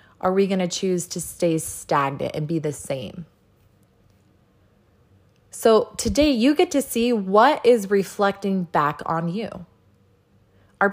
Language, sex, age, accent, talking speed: English, female, 20-39, American, 135 wpm